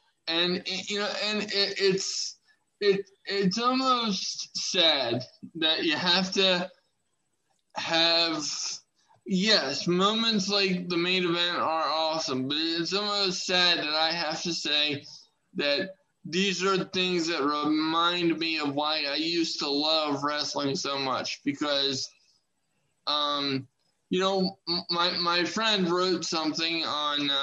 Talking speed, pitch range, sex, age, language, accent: 125 wpm, 150-185 Hz, male, 20-39, English, American